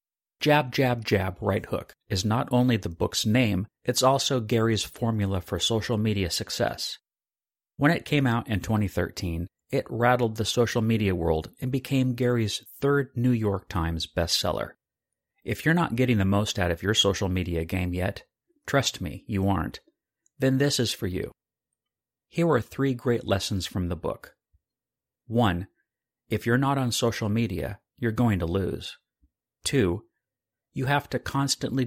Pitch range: 95-125 Hz